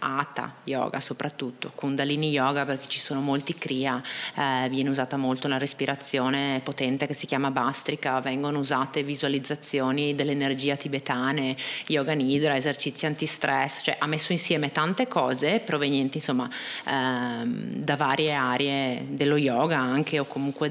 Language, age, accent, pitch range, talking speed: Italian, 30-49, native, 140-160 Hz, 135 wpm